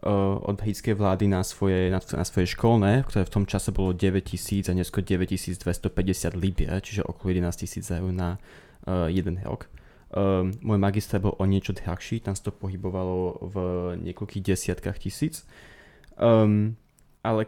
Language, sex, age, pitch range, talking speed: Slovak, male, 20-39, 95-105 Hz, 160 wpm